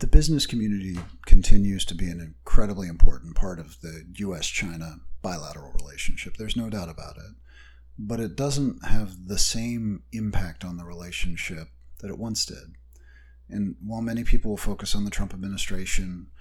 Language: English